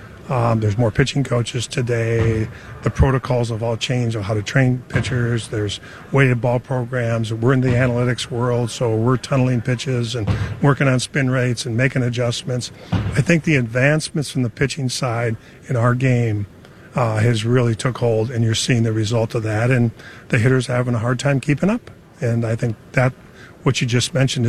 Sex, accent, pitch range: male, American, 115-130 Hz